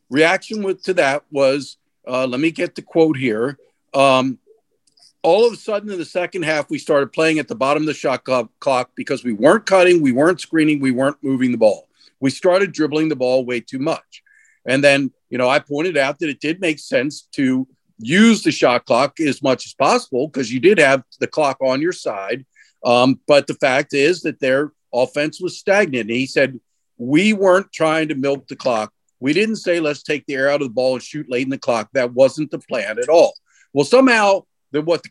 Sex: male